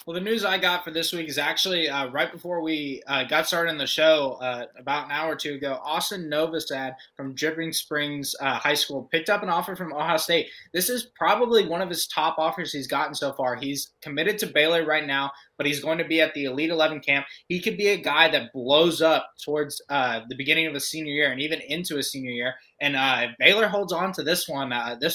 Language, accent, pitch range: English, American, 135-160 Hz